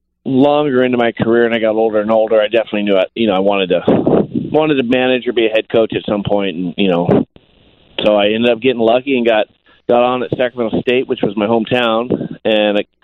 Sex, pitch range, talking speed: male, 105-120 Hz, 235 wpm